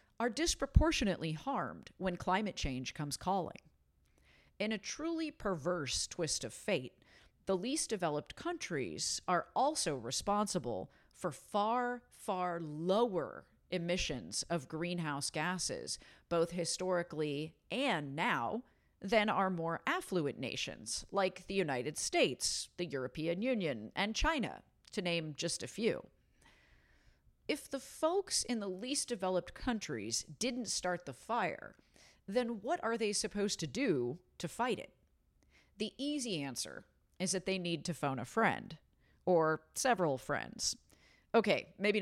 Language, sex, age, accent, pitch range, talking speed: English, female, 40-59, American, 150-215 Hz, 130 wpm